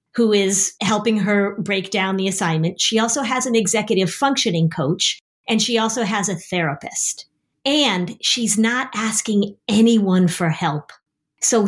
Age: 40-59